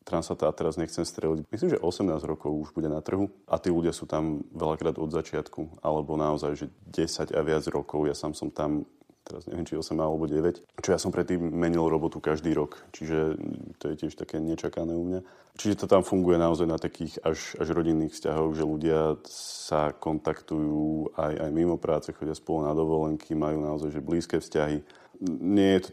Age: 30-49